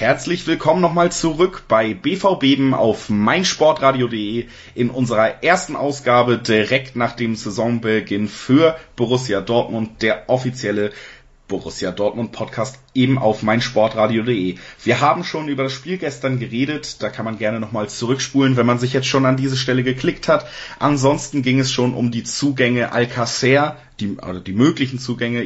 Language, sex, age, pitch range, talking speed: German, male, 30-49, 110-135 Hz, 150 wpm